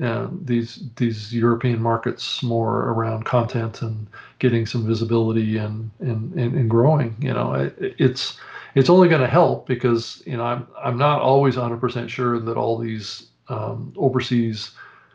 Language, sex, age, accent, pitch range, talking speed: English, male, 40-59, American, 115-130 Hz, 160 wpm